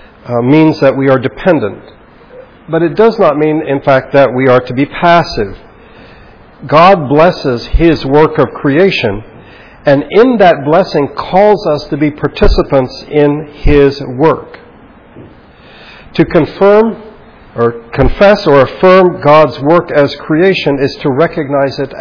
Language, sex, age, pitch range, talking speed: English, male, 50-69, 125-160 Hz, 140 wpm